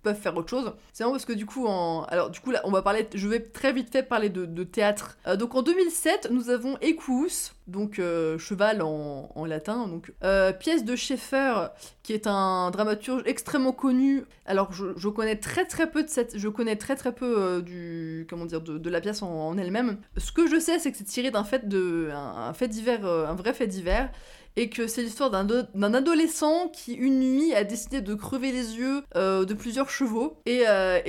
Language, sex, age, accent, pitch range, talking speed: French, female, 20-39, French, 185-265 Hz, 225 wpm